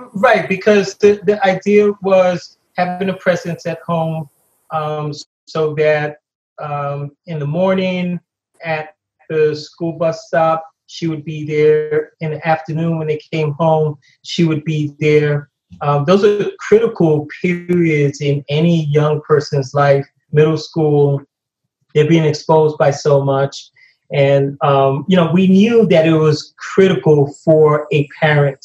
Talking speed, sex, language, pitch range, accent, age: 145 wpm, male, English, 145-165 Hz, American, 30-49